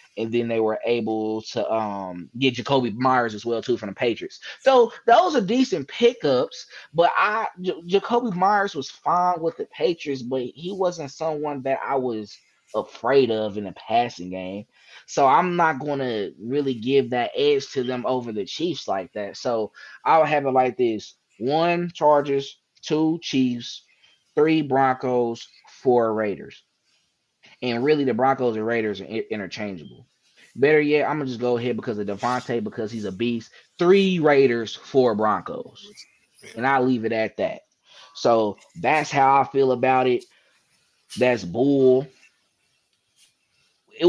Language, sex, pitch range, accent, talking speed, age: English, male, 115-150 Hz, American, 160 wpm, 20-39